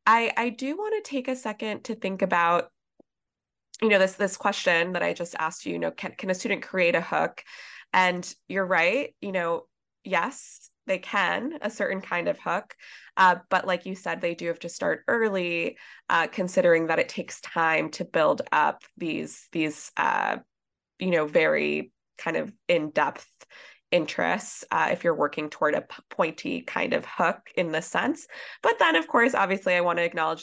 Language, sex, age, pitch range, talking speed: English, female, 20-39, 170-220 Hz, 190 wpm